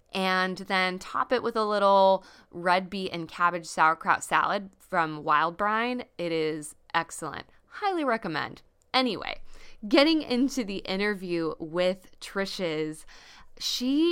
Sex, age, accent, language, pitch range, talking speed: female, 20-39, American, English, 155-200 Hz, 125 wpm